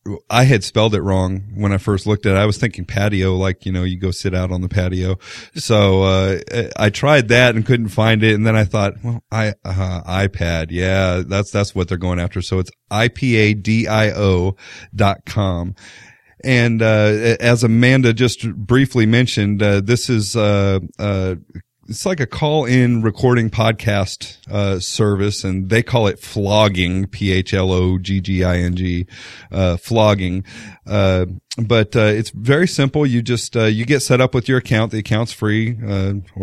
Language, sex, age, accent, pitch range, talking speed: English, male, 40-59, American, 95-115 Hz, 190 wpm